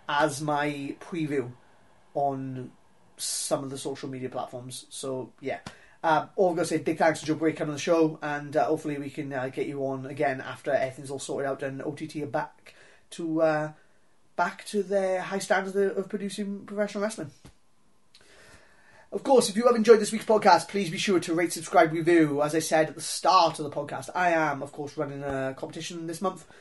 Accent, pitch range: British, 140-175 Hz